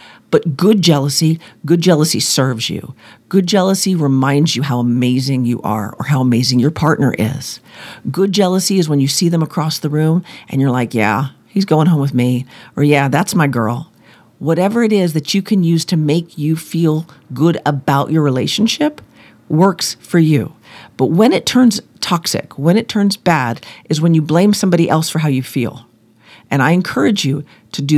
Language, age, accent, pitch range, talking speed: English, 50-69, American, 140-205 Hz, 190 wpm